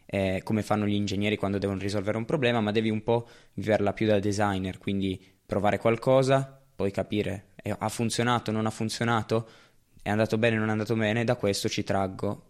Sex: male